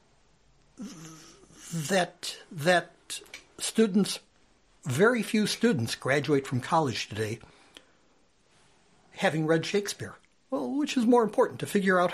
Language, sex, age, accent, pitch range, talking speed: English, male, 60-79, American, 150-225 Hz, 105 wpm